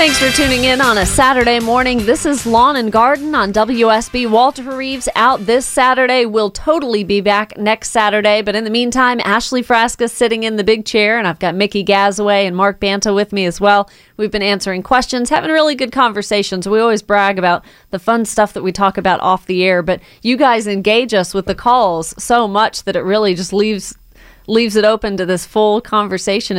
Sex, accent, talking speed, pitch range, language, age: female, American, 210 wpm, 185-220 Hz, English, 30-49